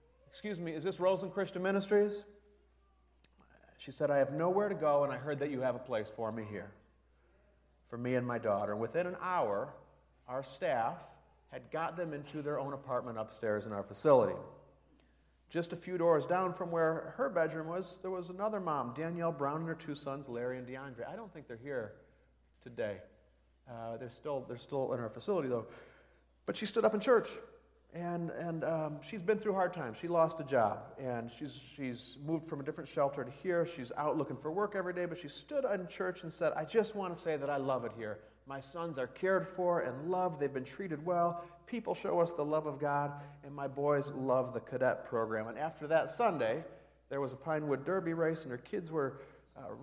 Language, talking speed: English, 210 wpm